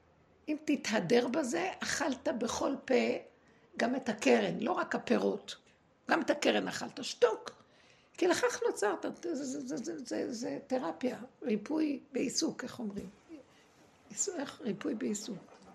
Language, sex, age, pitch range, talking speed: Hebrew, female, 60-79, 220-310 Hz, 105 wpm